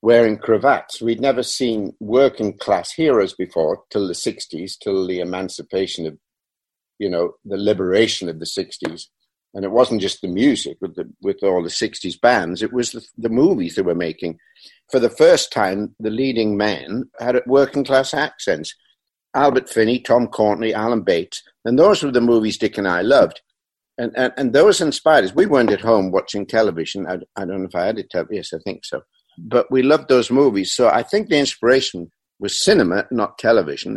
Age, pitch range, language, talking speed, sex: 60-79, 95-135 Hz, English, 190 wpm, male